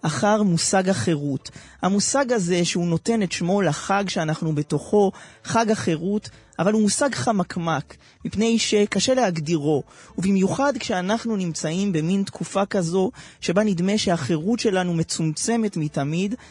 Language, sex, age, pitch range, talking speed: Hebrew, male, 20-39, 160-205 Hz, 120 wpm